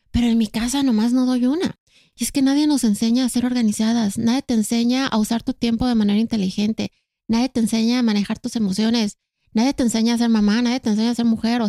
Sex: female